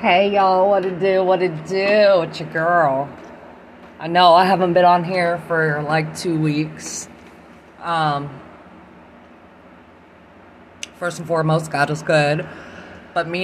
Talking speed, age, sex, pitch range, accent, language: 140 wpm, 20-39, female, 135-175 Hz, American, English